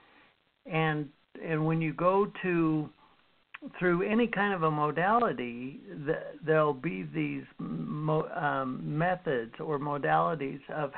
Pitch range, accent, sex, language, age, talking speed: 145-185 Hz, American, male, English, 60-79, 120 wpm